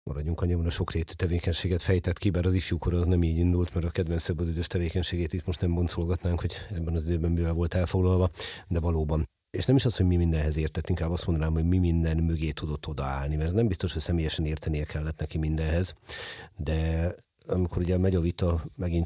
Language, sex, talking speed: Hungarian, male, 210 wpm